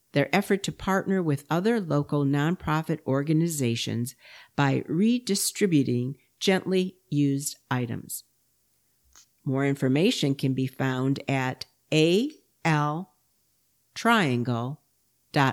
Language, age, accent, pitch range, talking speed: English, 50-69, American, 130-185 Hz, 80 wpm